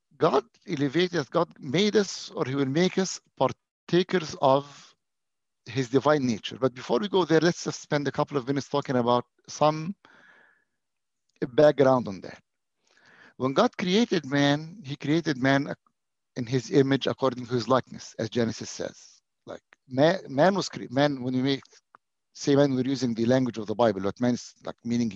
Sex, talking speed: male, 175 wpm